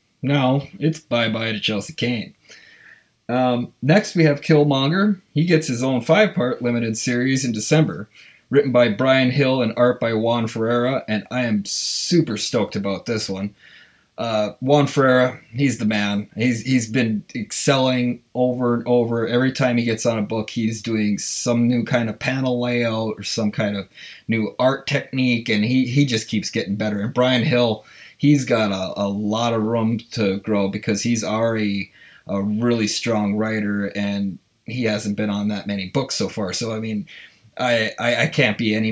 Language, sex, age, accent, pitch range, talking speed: English, male, 20-39, American, 110-125 Hz, 180 wpm